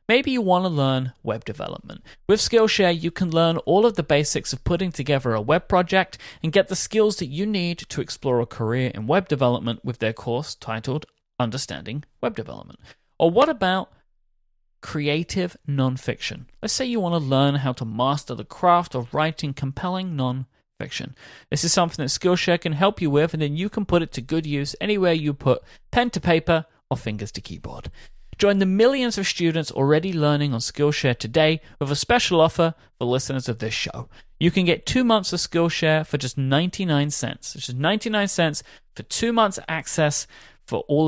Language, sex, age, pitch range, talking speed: English, male, 30-49, 130-180 Hz, 190 wpm